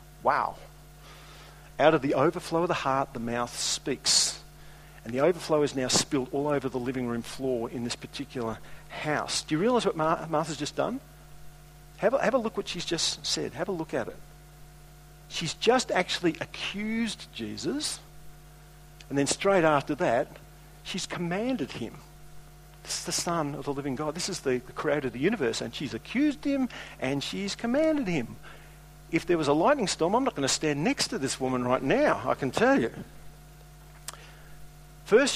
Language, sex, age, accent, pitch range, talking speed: English, male, 50-69, Australian, 140-165 Hz, 180 wpm